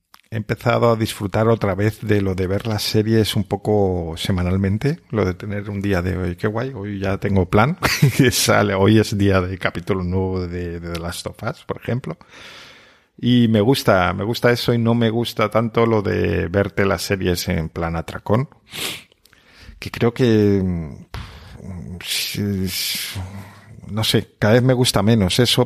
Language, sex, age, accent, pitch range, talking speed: Spanish, male, 50-69, Spanish, 95-115 Hz, 175 wpm